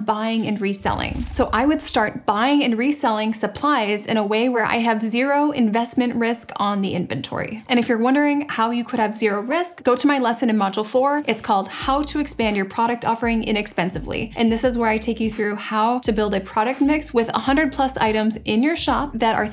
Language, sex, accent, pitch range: English, female, American, 215-260 Hz